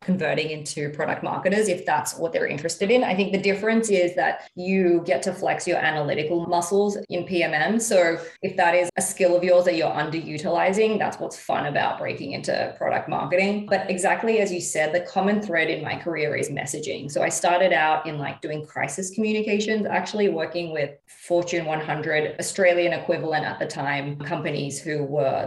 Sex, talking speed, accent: female, 185 wpm, Australian